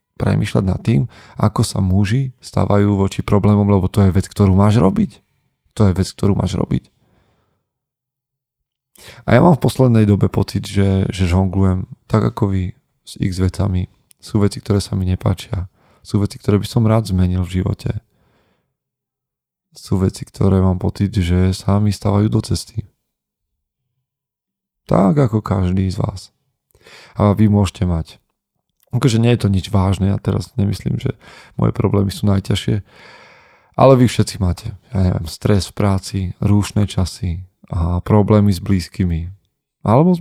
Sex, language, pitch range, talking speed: male, Slovak, 95-115 Hz, 155 wpm